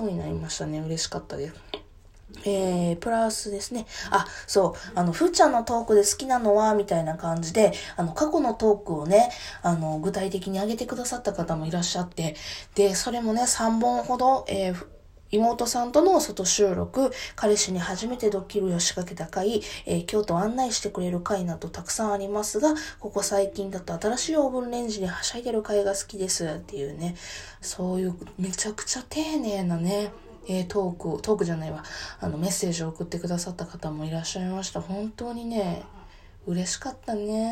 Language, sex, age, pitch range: Japanese, female, 20-39, 175-220 Hz